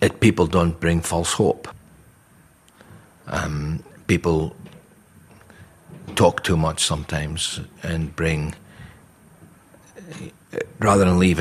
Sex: male